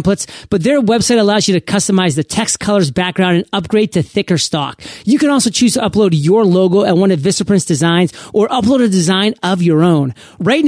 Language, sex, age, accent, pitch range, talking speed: English, male, 40-59, American, 180-225 Hz, 210 wpm